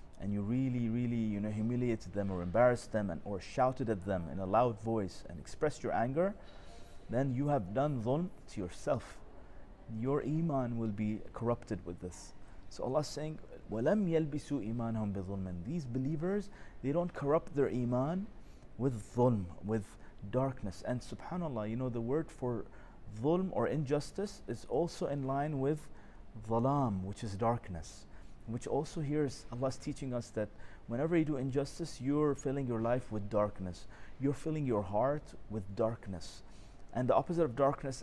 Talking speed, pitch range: 165 wpm, 100-140 Hz